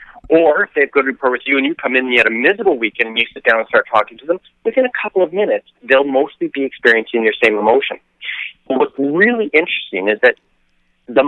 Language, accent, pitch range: English, American, 120-180 Hz